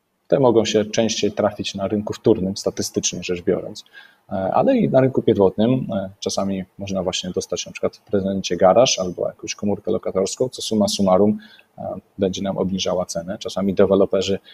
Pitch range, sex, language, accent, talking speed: 95-105 Hz, male, Polish, native, 155 wpm